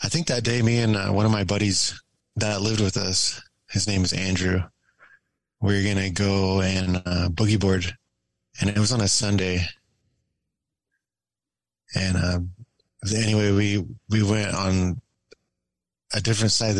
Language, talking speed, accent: English, 155 wpm, American